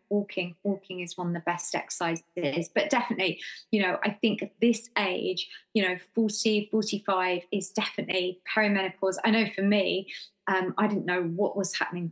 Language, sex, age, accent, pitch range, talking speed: English, female, 20-39, British, 180-200 Hz, 175 wpm